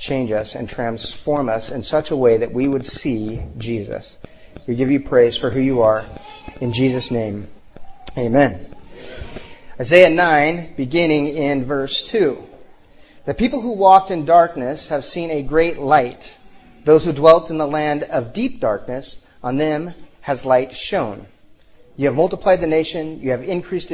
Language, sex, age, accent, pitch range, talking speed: English, male, 30-49, American, 130-170 Hz, 165 wpm